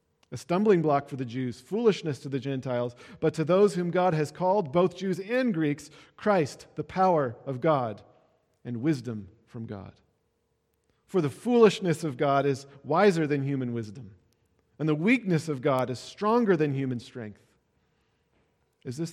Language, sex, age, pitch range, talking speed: English, male, 40-59, 120-165 Hz, 165 wpm